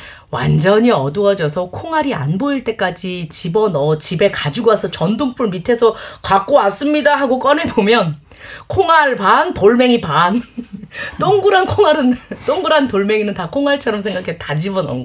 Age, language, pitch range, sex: 30-49, Korean, 160-265 Hz, female